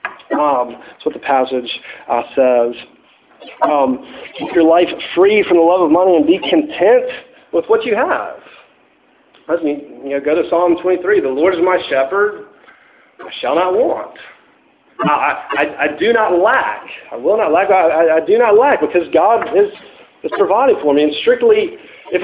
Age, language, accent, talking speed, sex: 40-59, English, American, 180 wpm, male